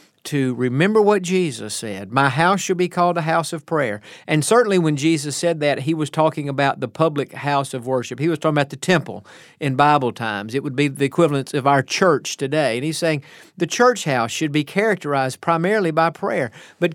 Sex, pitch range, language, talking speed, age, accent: male, 140-175 Hz, English, 210 wpm, 50-69, American